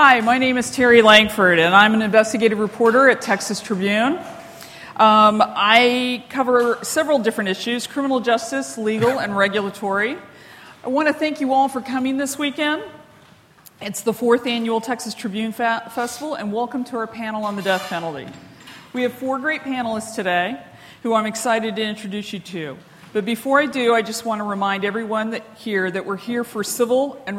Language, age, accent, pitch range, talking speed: English, 40-59, American, 200-245 Hz, 175 wpm